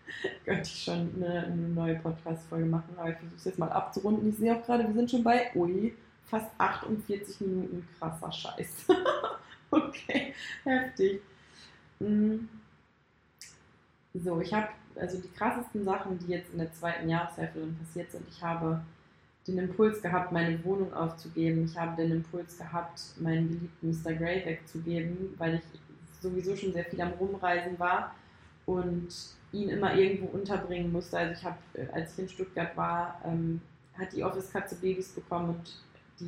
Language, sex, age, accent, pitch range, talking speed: German, female, 20-39, German, 165-190 Hz, 155 wpm